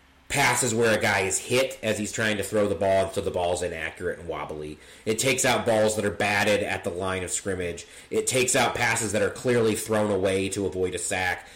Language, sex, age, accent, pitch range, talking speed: English, male, 30-49, American, 95-125 Hz, 230 wpm